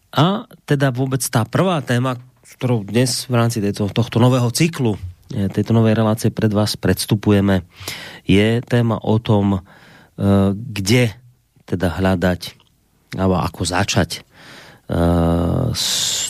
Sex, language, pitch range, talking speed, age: male, Slovak, 100-130 Hz, 110 wpm, 30-49